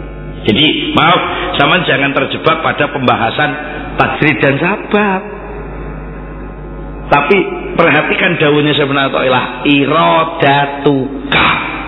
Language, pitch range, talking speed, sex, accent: English, 120-170 Hz, 75 wpm, male, Indonesian